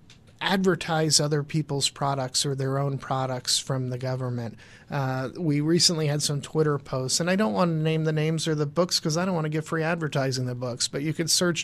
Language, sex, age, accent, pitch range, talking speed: English, male, 40-59, American, 135-170 Hz, 220 wpm